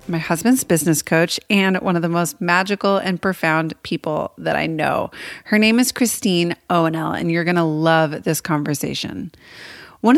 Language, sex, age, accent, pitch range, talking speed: English, female, 30-49, American, 165-205 Hz, 170 wpm